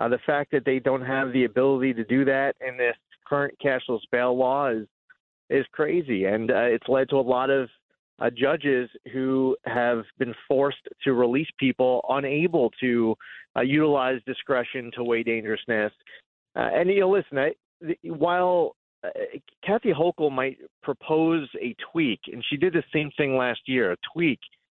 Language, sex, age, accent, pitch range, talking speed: English, male, 30-49, American, 130-195 Hz, 170 wpm